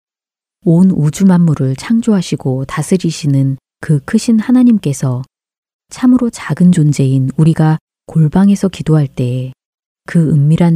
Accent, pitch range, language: native, 135-185 Hz, Korean